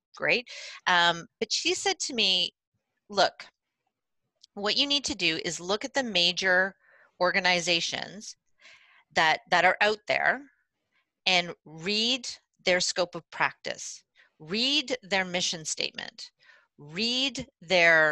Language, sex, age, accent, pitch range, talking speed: English, female, 40-59, American, 155-225 Hz, 120 wpm